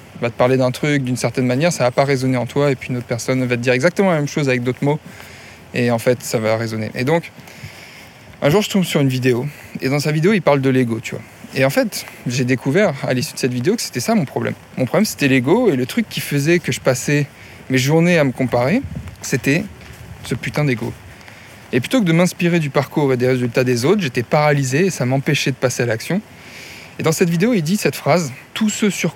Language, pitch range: French, 125-170 Hz